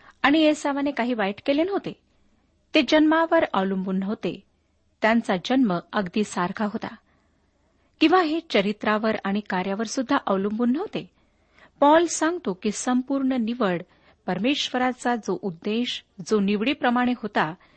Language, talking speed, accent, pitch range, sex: Marathi, 110 wpm, native, 190-260 Hz, female